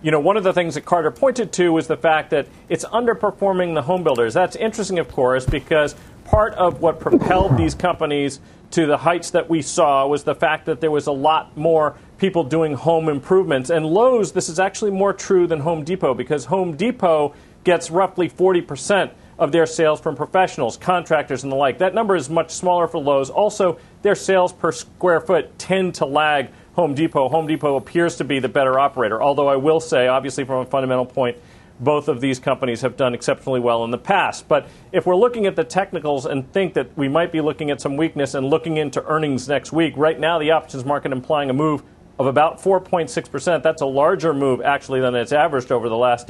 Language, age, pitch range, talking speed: English, 40-59, 140-175 Hz, 215 wpm